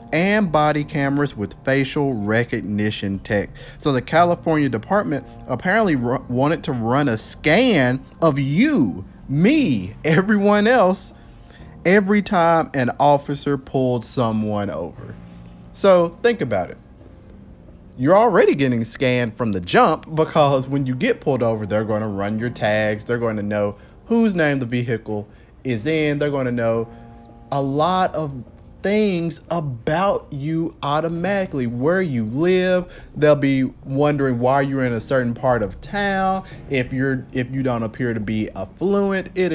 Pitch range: 115-170 Hz